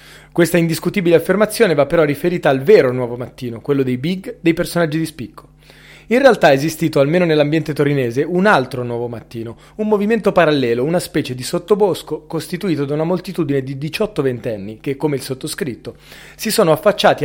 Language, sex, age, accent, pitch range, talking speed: Italian, male, 30-49, native, 135-180 Hz, 170 wpm